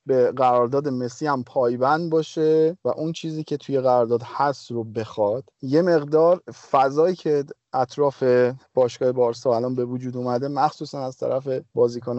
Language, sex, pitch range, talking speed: Persian, male, 125-160 Hz, 150 wpm